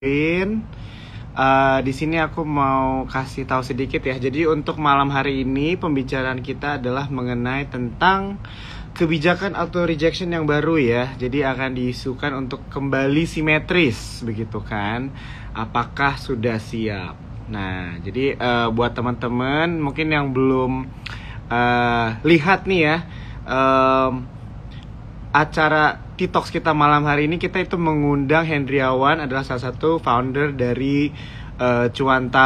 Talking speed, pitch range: 125 wpm, 125-155 Hz